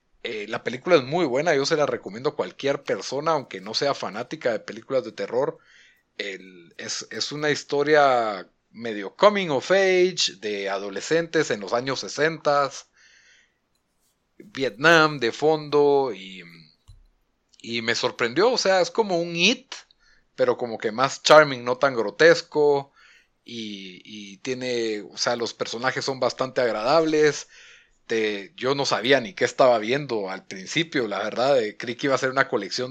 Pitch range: 120-190 Hz